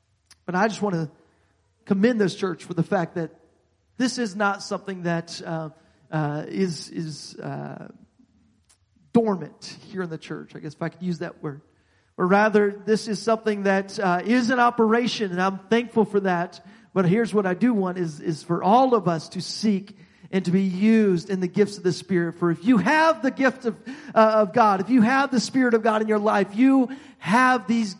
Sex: male